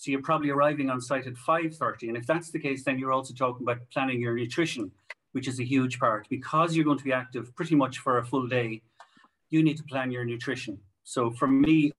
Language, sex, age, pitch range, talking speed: English, male, 40-59, 120-140 Hz, 235 wpm